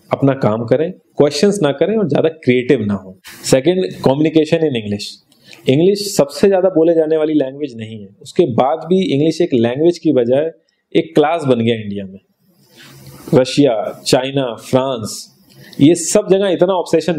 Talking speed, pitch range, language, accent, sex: 160 wpm, 115-160 Hz, Hindi, native, male